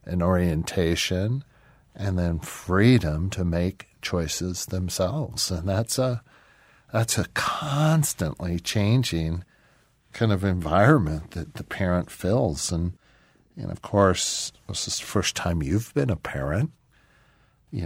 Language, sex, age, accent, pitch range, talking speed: English, male, 50-69, American, 90-110 Hz, 125 wpm